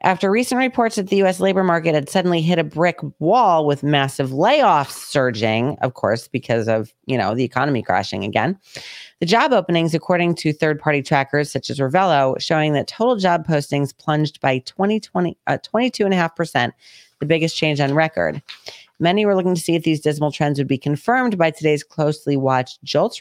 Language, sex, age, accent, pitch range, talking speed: English, female, 30-49, American, 135-175 Hz, 180 wpm